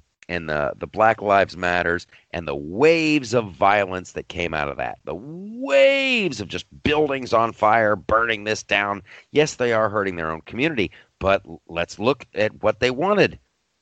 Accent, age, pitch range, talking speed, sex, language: American, 40-59, 95-135 Hz, 175 wpm, male, English